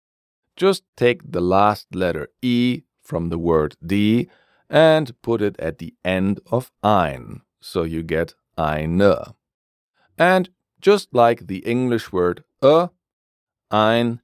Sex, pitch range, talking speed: male, 85-120 Hz, 125 wpm